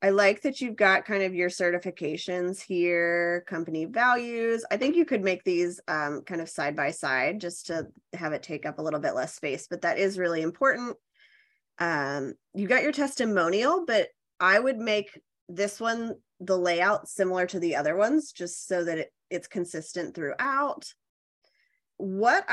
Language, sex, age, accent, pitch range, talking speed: English, female, 20-39, American, 175-230 Hz, 175 wpm